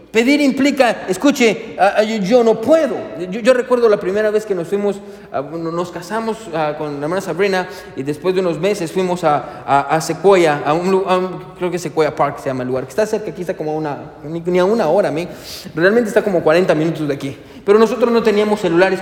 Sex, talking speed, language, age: male, 235 wpm, Spanish, 30-49